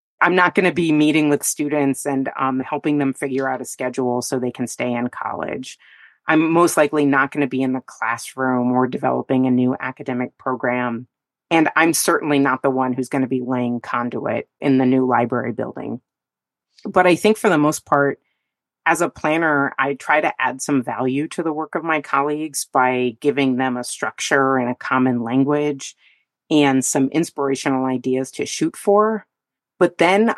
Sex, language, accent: female, English, American